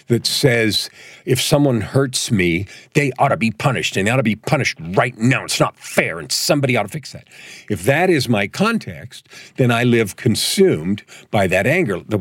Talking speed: 200 wpm